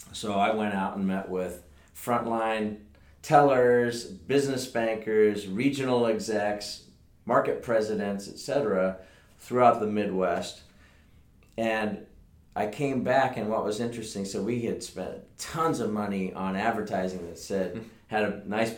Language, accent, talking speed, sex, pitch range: English, American, 130 wpm, male, 95-110 Hz